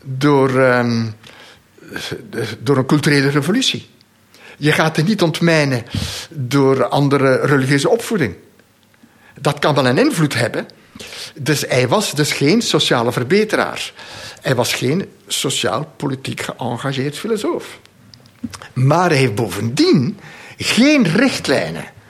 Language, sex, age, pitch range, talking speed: Dutch, male, 60-79, 125-170 Hz, 110 wpm